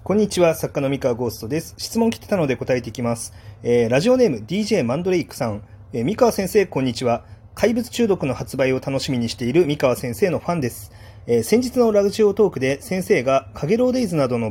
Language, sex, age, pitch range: Japanese, male, 30-49, 125-190 Hz